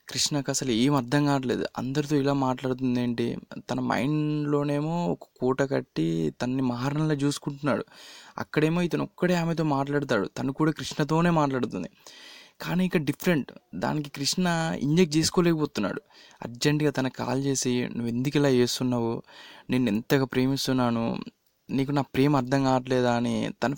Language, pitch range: Telugu, 130-155 Hz